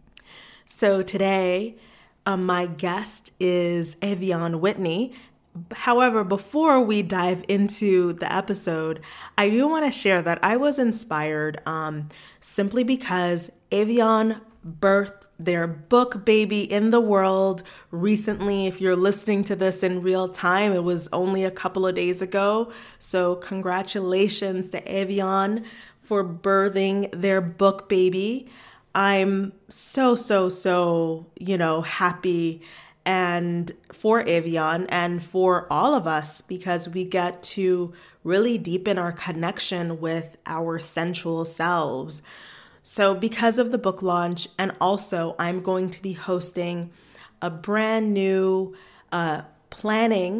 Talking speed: 125 wpm